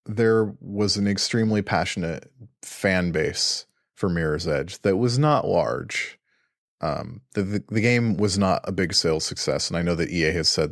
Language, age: English, 30-49